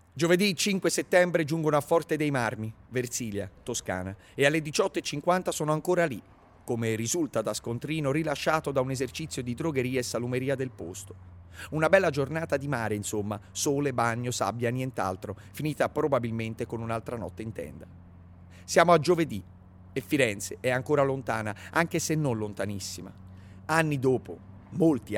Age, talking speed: 30-49, 150 wpm